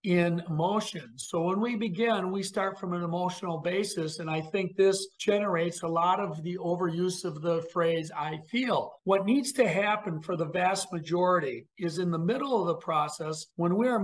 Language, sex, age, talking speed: English, male, 50-69, 190 wpm